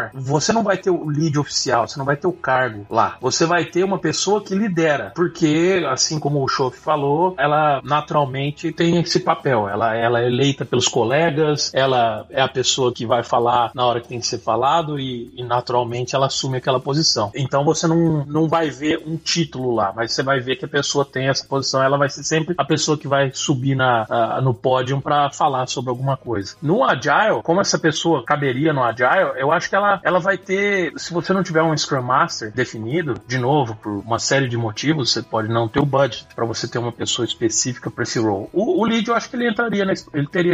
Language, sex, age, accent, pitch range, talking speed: Portuguese, male, 30-49, Brazilian, 120-155 Hz, 225 wpm